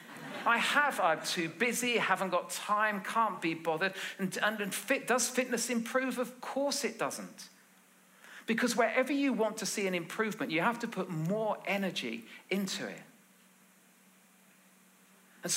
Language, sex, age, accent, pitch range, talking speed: English, male, 40-59, British, 170-235 Hz, 145 wpm